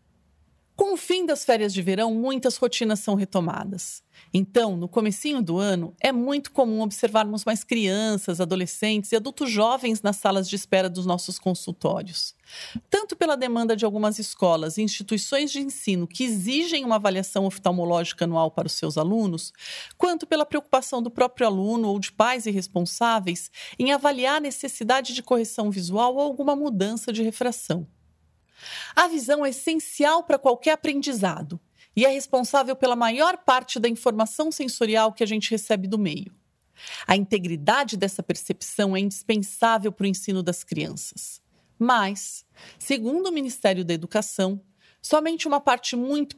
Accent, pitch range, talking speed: Brazilian, 195-265 Hz, 155 wpm